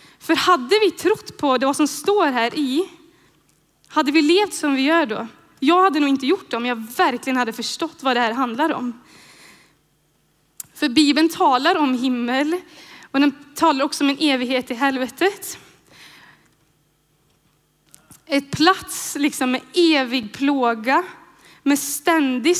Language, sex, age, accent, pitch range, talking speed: Swedish, female, 10-29, native, 260-330 Hz, 145 wpm